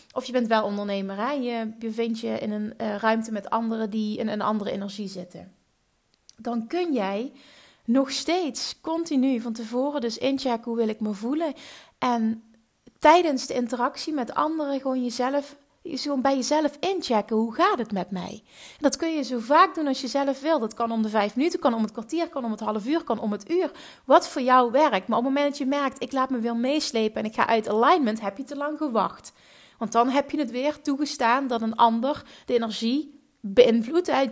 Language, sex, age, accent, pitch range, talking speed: Dutch, female, 30-49, Dutch, 225-290 Hz, 215 wpm